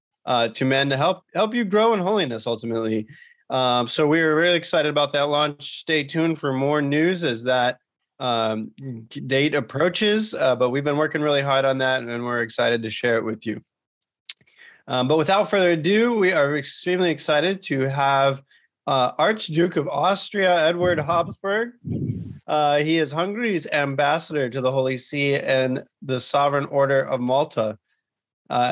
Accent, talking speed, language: American, 165 wpm, English